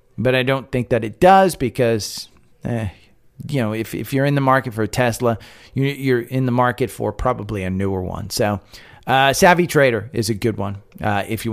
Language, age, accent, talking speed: English, 40-59, American, 205 wpm